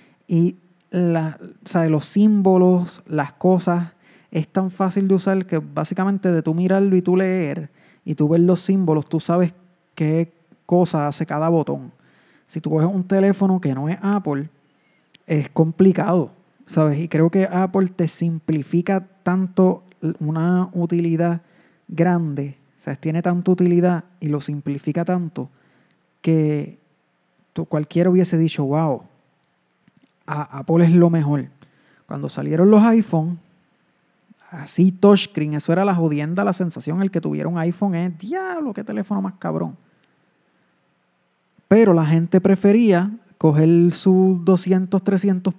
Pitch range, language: 160-185 Hz, Spanish